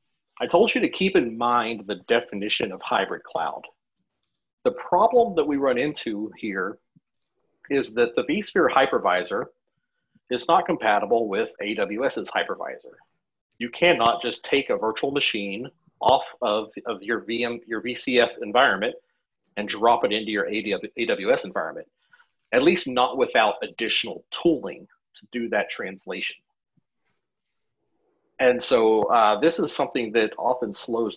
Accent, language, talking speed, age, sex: American, English, 135 wpm, 40-59, male